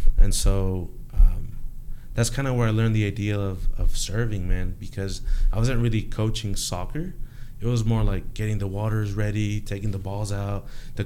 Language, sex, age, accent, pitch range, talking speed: English, male, 20-39, American, 100-120 Hz, 185 wpm